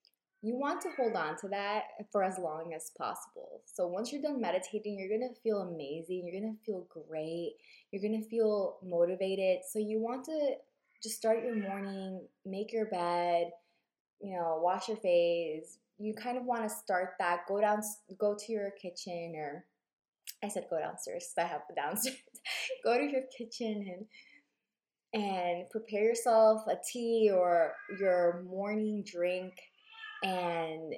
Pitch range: 175-230 Hz